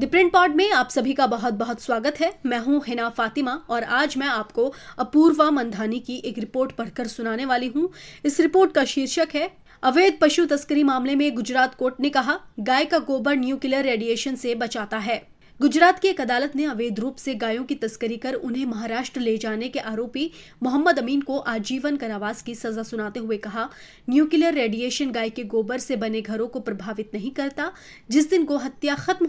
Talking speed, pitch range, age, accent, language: 190 wpm, 230-295 Hz, 20-39, Indian, English